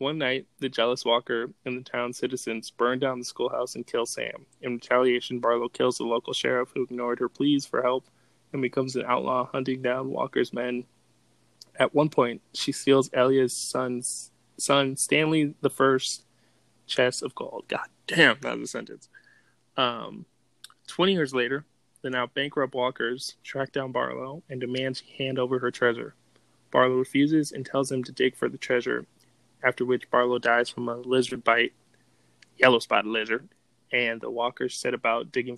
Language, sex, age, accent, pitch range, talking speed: English, male, 20-39, American, 125-135 Hz, 170 wpm